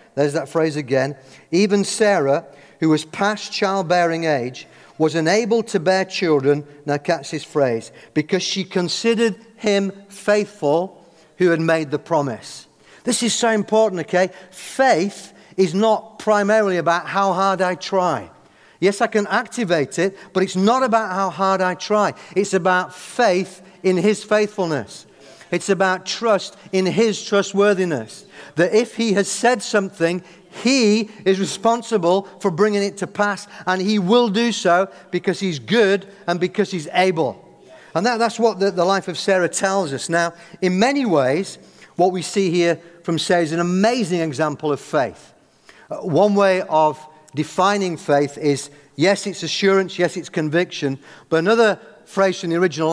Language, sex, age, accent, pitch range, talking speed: English, male, 50-69, British, 165-205 Hz, 160 wpm